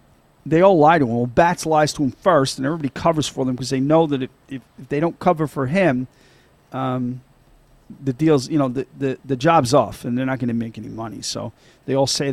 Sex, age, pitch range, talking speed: male, 40-59, 130-150 Hz, 240 wpm